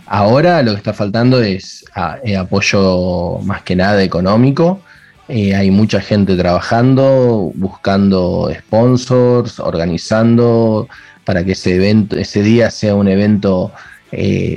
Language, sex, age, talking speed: Spanish, male, 20-39, 115 wpm